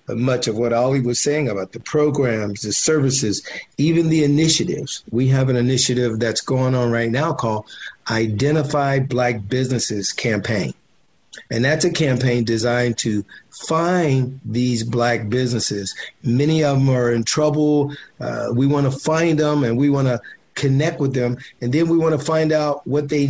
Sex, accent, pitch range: male, American, 120-145 Hz